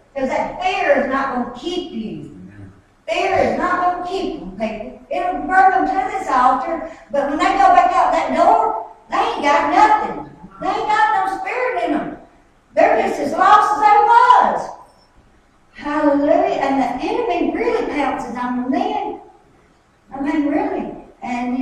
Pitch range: 215-290 Hz